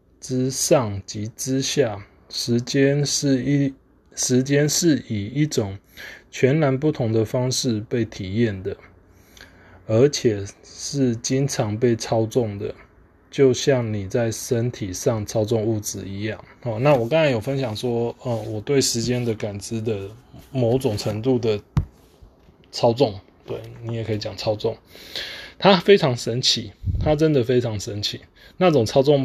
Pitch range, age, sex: 105-135 Hz, 20-39, male